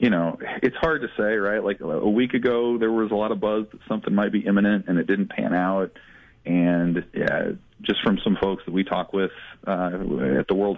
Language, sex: English, male